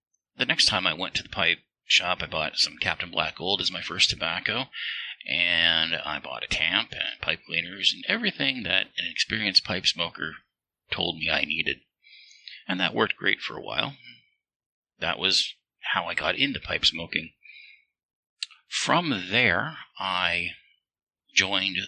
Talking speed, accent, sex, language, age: 155 wpm, American, male, English, 30-49